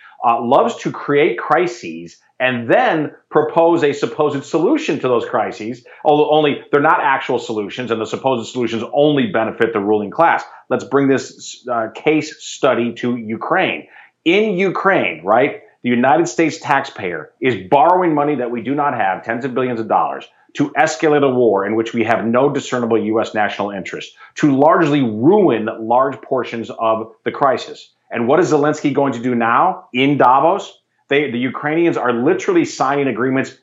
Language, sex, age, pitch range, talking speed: English, male, 40-59, 120-155 Hz, 170 wpm